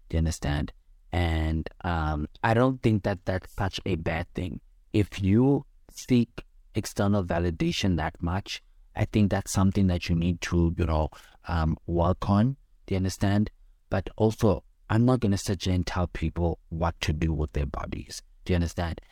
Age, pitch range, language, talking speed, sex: 30-49, 80-95 Hz, English, 175 wpm, male